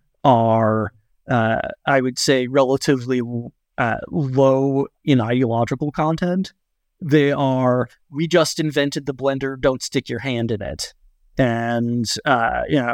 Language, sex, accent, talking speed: English, male, American, 125 wpm